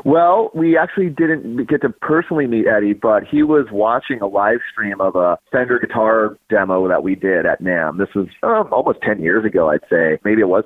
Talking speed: 215 wpm